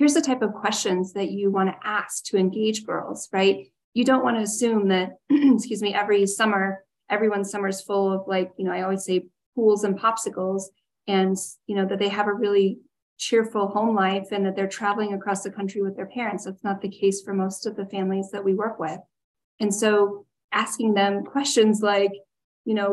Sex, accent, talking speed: female, American, 210 wpm